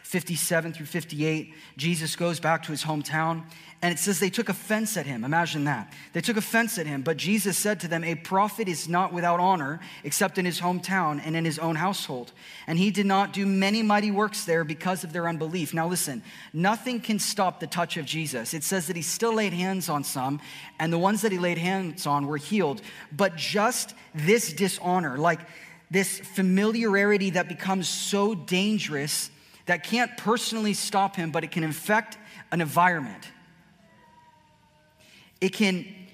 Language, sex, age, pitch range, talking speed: English, male, 20-39, 165-205 Hz, 180 wpm